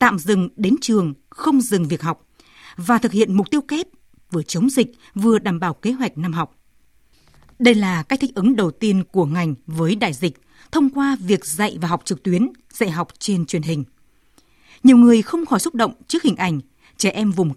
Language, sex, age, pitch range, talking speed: Vietnamese, female, 20-39, 180-235 Hz, 210 wpm